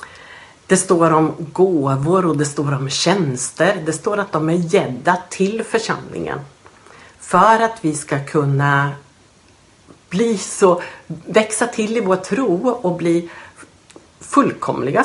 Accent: native